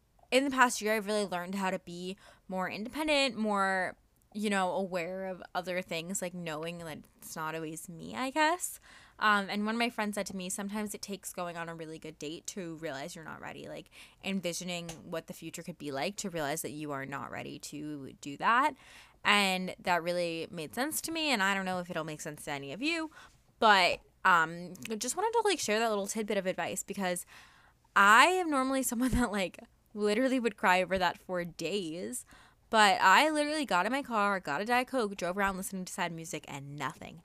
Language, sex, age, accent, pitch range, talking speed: English, female, 20-39, American, 175-225 Hz, 215 wpm